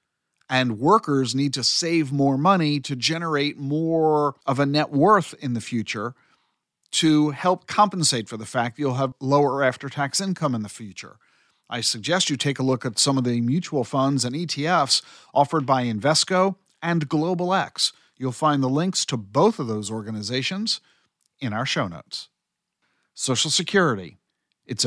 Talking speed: 160 wpm